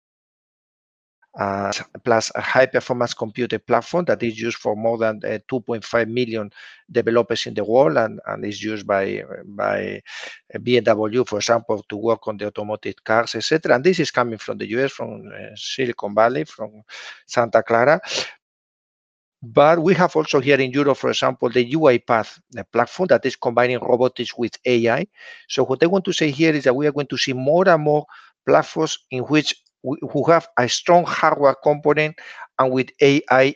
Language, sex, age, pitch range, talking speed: English, male, 50-69, 115-155 Hz, 175 wpm